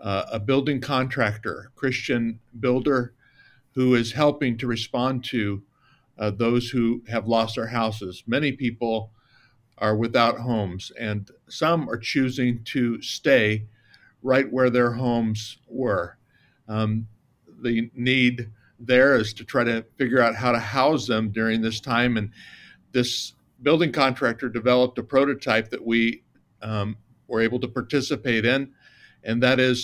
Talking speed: 140 wpm